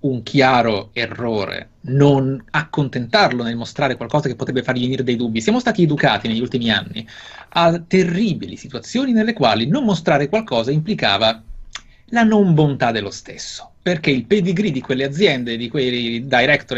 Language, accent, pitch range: Italian, native, 120-160 Hz